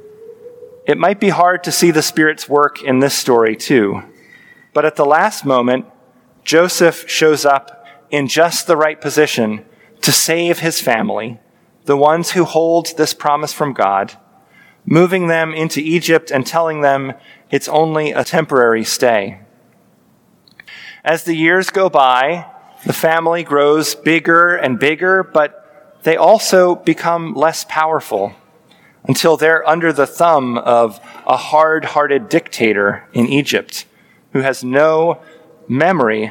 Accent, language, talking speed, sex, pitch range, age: American, English, 135 wpm, male, 140-170 Hz, 30-49